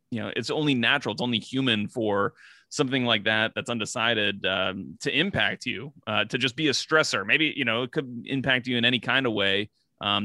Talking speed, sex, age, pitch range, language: 215 wpm, male, 30-49, 105-125 Hz, English